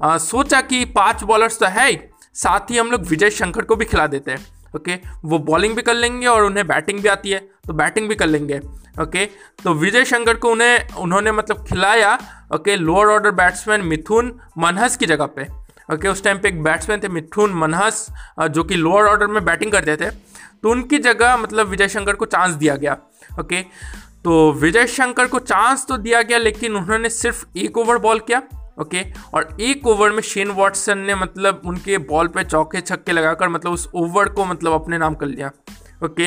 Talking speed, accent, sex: 200 wpm, native, male